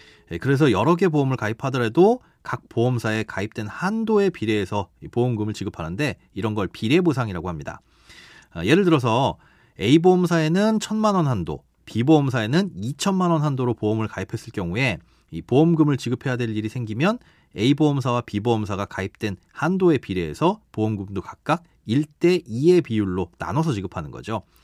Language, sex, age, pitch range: Korean, male, 30-49, 105-160 Hz